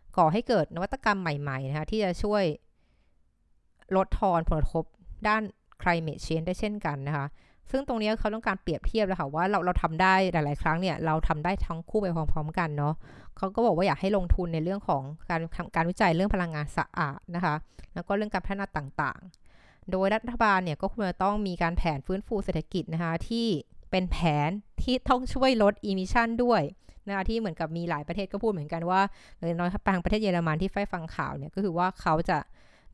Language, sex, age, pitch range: Thai, female, 20-39, 160-200 Hz